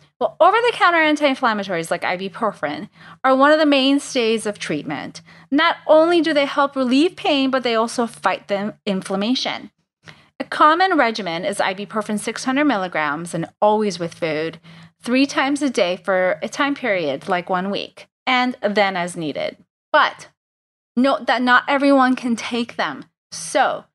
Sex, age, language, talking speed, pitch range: female, 30-49, English, 150 wpm, 180-270 Hz